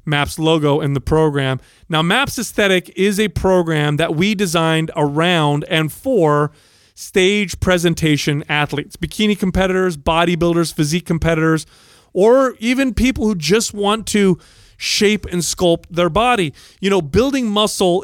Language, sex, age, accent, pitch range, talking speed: English, male, 30-49, American, 150-190 Hz, 135 wpm